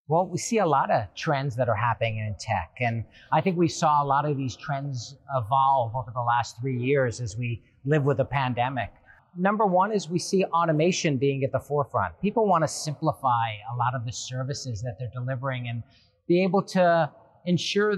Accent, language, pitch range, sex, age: American, Chinese, 130-175 Hz, male, 40-59